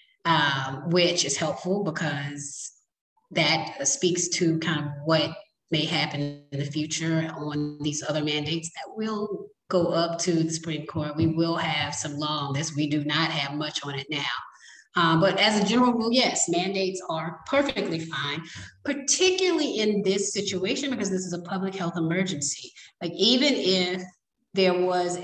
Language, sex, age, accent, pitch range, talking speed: English, female, 30-49, American, 155-190 Hz, 160 wpm